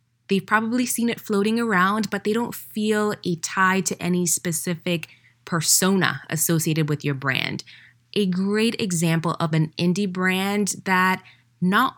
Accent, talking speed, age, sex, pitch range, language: American, 145 wpm, 20-39, female, 160-220 Hz, English